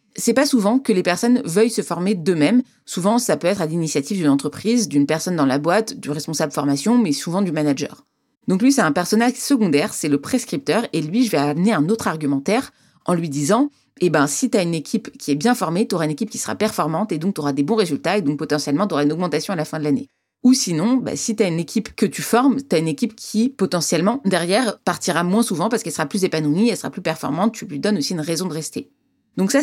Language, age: French, 30-49